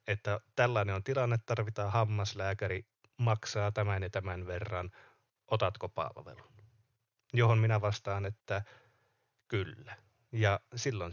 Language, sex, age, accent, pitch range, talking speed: Finnish, male, 30-49, native, 100-125 Hz, 110 wpm